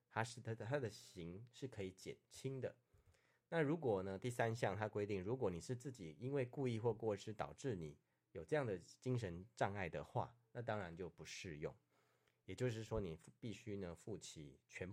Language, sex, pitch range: Chinese, male, 95-120 Hz